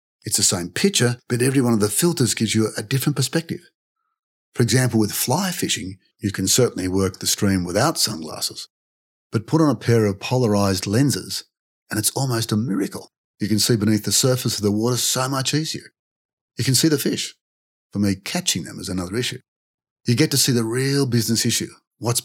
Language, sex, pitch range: English, male, 100-130 Hz